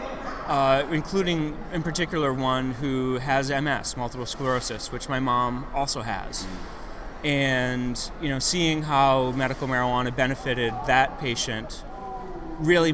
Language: English